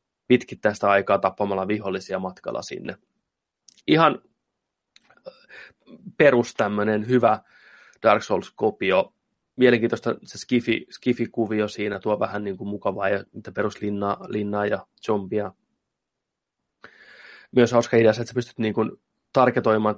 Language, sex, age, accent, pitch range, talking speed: Finnish, male, 20-39, native, 100-115 Hz, 100 wpm